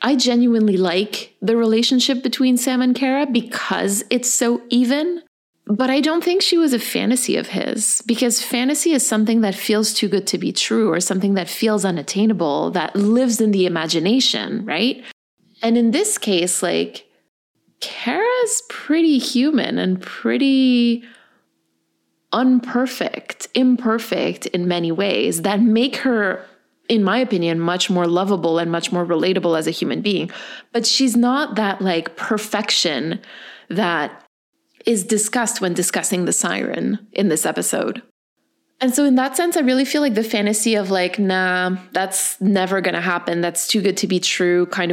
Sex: female